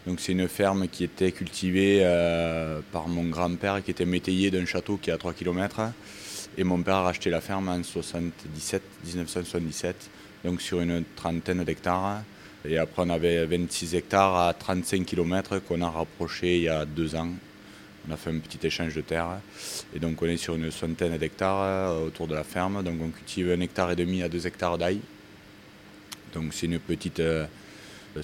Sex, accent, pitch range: male, French, 80-95 Hz